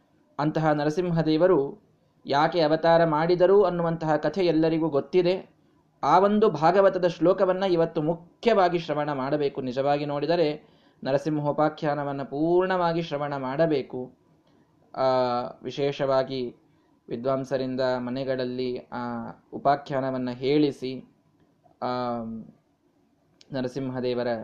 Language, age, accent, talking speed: Kannada, 20-39, native, 70 wpm